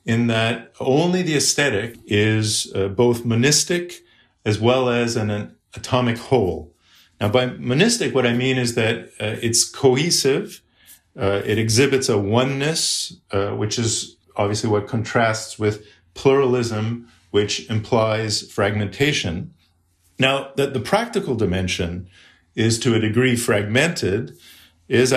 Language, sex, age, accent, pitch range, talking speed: English, male, 50-69, American, 100-125 Hz, 130 wpm